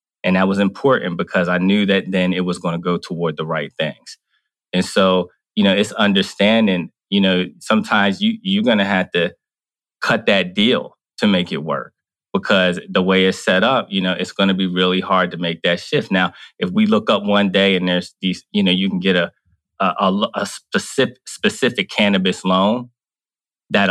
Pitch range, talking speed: 90-105 Hz, 205 wpm